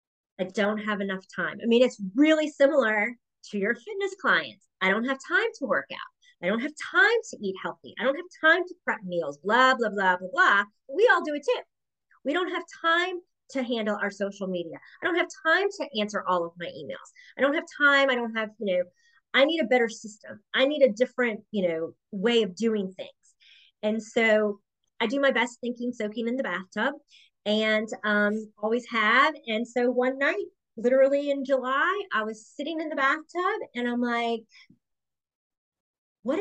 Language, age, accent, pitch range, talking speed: English, 30-49, American, 210-305 Hz, 200 wpm